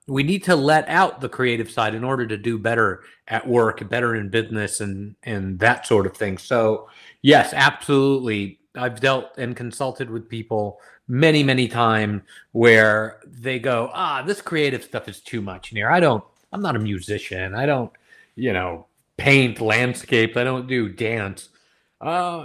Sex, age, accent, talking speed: male, 30-49, American, 170 wpm